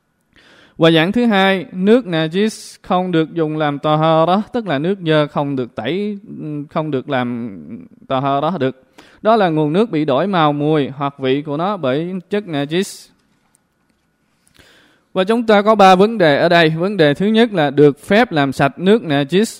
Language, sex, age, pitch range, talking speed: Vietnamese, male, 20-39, 150-200 Hz, 190 wpm